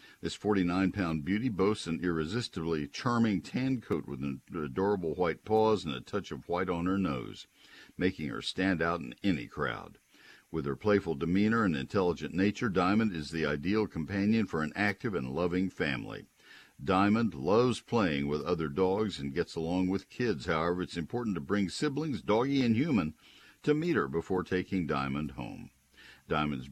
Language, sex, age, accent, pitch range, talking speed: English, male, 60-79, American, 80-105 Hz, 170 wpm